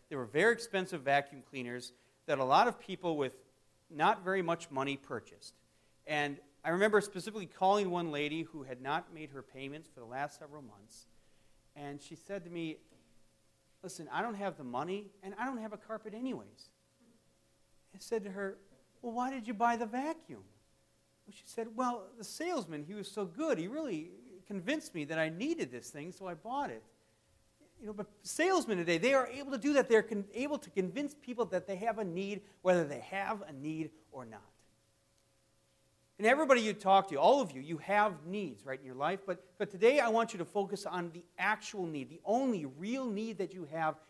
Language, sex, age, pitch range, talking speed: English, male, 40-59, 150-225 Hz, 205 wpm